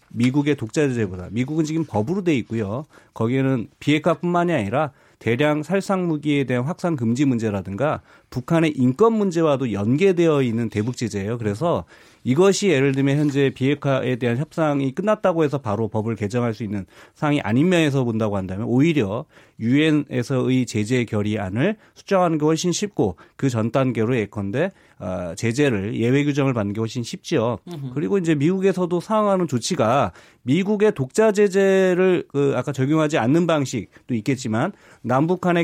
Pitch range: 120-170 Hz